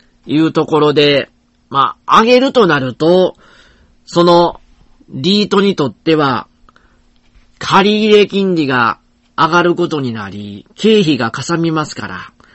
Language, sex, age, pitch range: Japanese, male, 40-59, 145-220 Hz